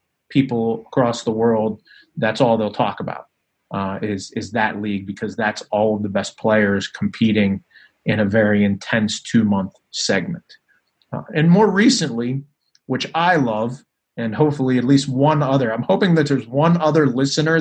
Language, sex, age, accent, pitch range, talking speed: English, male, 30-49, American, 115-135 Hz, 155 wpm